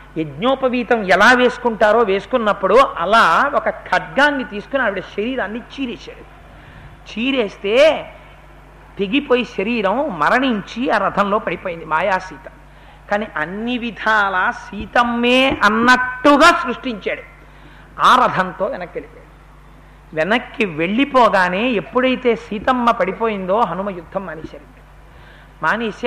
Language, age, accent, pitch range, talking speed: Telugu, 50-69, native, 215-270 Hz, 90 wpm